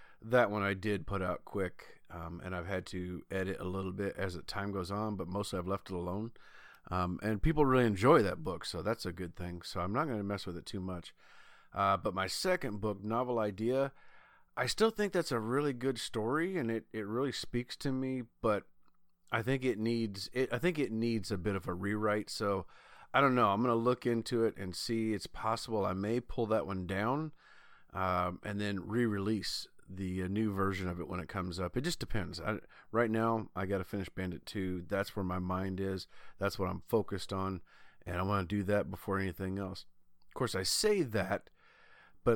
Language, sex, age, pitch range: English, male, 40-59, 95-120 Hz